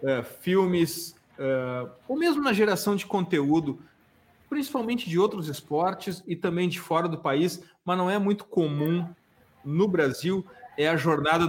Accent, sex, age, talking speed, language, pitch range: Brazilian, male, 40-59, 150 wpm, Portuguese, 145-180 Hz